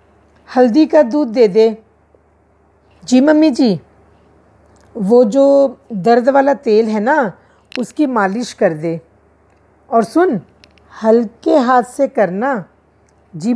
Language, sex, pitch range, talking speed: Hindi, female, 165-265 Hz, 115 wpm